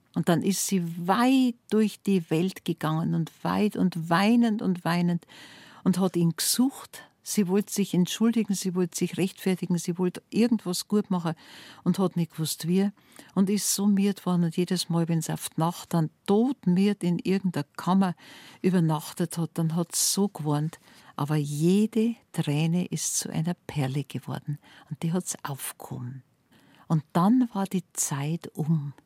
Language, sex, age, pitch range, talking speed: German, female, 50-69, 155-185 Hz, 165 wpm